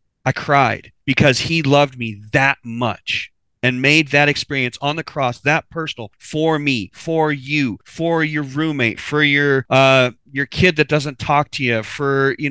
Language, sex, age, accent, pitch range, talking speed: English, male, 30-49, American, 115-150 Hz, 175 wpm